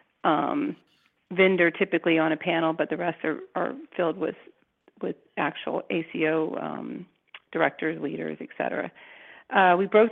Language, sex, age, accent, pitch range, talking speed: English, female, 40-59, American, 165-190 Hz, 140 wpm